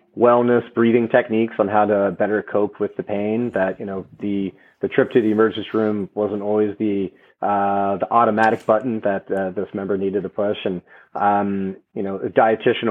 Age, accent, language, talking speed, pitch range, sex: 30-49, American, English, 190 wpm, 95-110 Hz, male